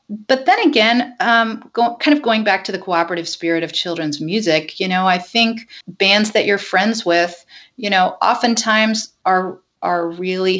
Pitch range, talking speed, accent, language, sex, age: 170-220 Hz, 170 wpm, American, English, female, 40-59